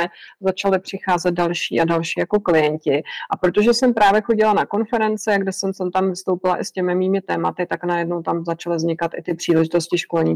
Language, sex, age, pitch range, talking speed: English, female, 30-49, 165-190 Hz, 185 wpm